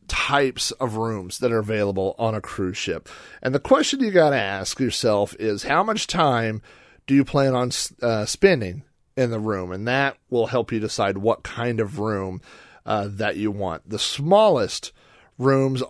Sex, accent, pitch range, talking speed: male, American, 105-140 Hz, 180 wpm